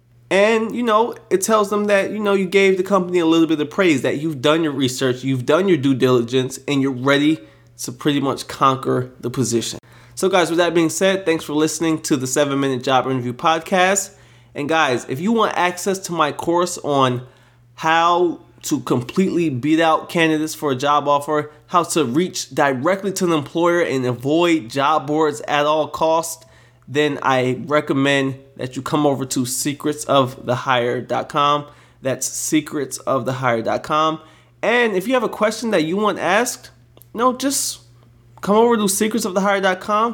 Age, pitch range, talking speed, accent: 20-39, 130-180 Hz, 170 wpm, American